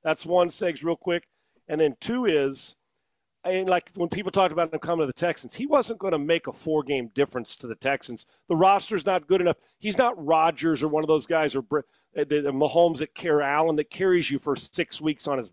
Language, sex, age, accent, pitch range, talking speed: English, male, 40-59, American, 145-185 Hz, 235 wpm